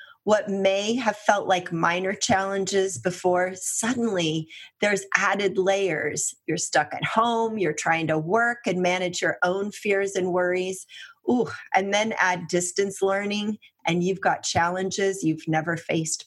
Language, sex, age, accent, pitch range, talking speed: English, female, 30-49, American, 170-215 Hz, 150 wpm